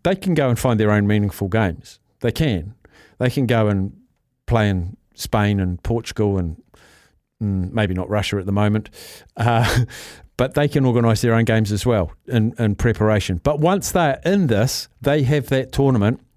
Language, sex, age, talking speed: English, male, 50-69, 185 wpm